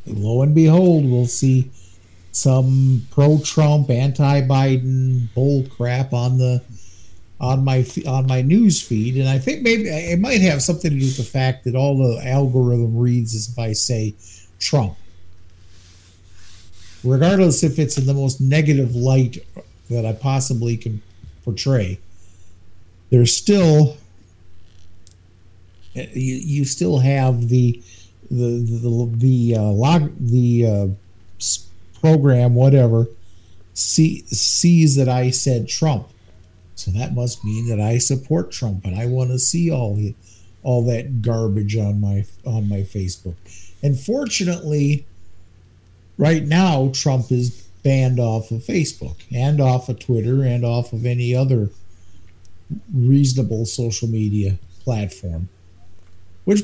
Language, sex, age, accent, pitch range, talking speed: English, male, 50-69, American, 95-135 Hz, 130 wpm